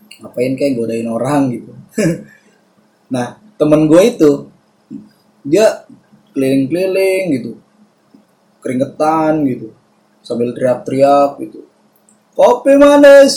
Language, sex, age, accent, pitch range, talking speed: Indonesian, male, 20-39, native, 125-190 Hz, 85 wpm